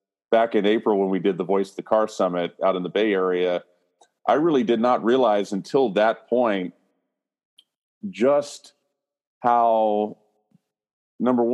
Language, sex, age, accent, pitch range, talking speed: English, male, 40-59, American, 100-120 Hz, 145 wpm